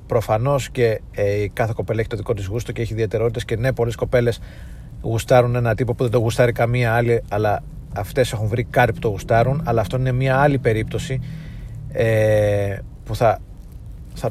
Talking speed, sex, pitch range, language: 170 wpm, male, 105-125 Hz, Greek